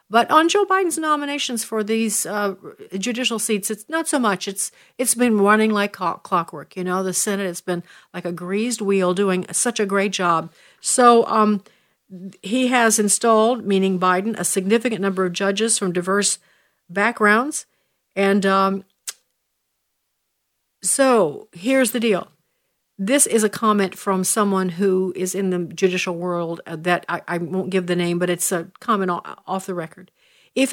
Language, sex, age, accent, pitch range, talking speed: English, female, 50-69, American, 185-230 Hz, 160 wpm